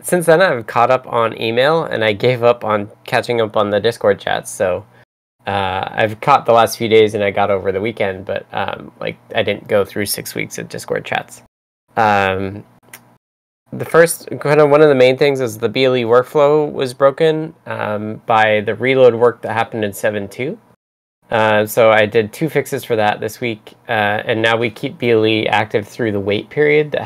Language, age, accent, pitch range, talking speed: English, 10-29, American, 105-125 Hz, 200 wpm